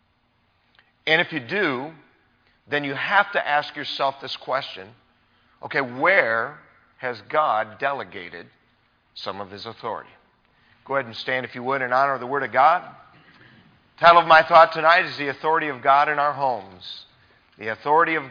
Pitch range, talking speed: 110-145 Hz, 170 wpm